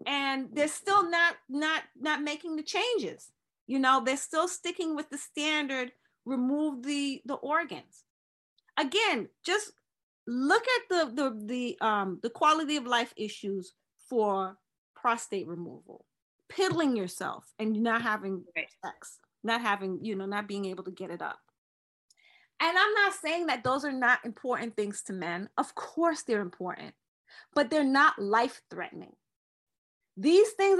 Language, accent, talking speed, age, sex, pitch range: English, American, 150 wpm, 30-49, female, 210-310 Hz